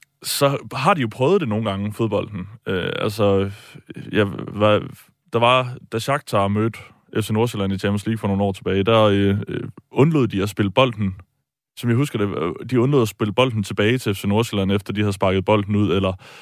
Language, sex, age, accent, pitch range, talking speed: Danish, male, 20-39, native, 100-120 Hz, 200 wpm